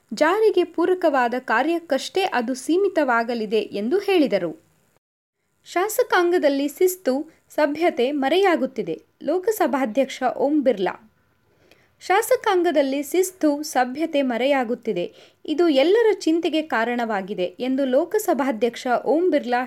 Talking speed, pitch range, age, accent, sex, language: 80 wpm, 240-340 Hz, 20-39, native, female, Kannada